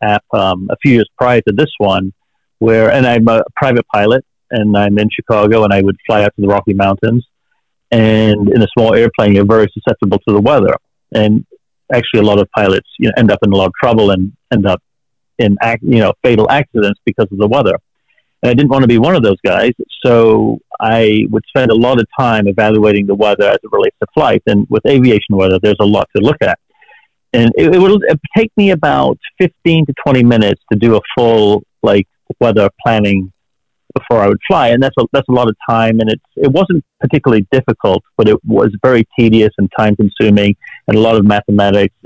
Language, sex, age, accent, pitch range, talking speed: English, male, 50-69, American, 105-125 Hz, 220 wpm